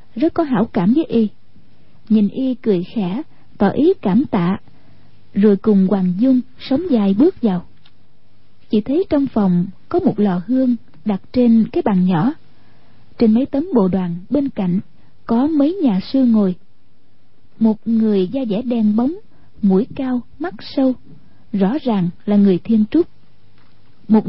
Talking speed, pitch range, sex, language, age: 160 wpm, 200-265 Hz, female, Vietnamese, 20-39